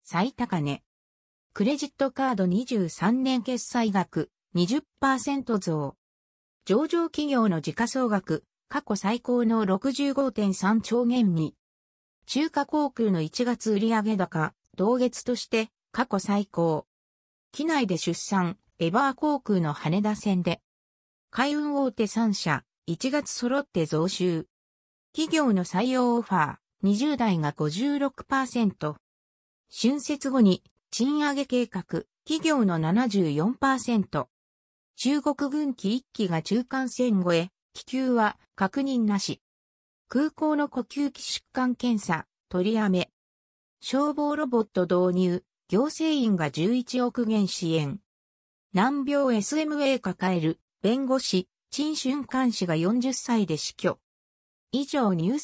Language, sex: Japanese, female